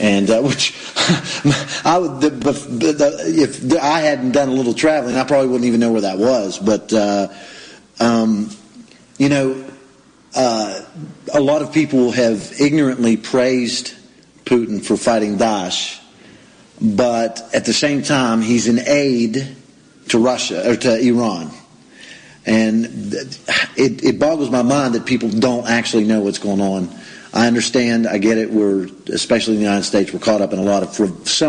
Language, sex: English, male